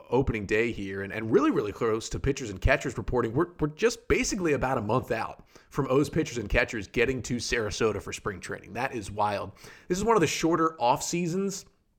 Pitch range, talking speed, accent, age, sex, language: 110-155 Hz, 215 wpm, American, 30-49, male, English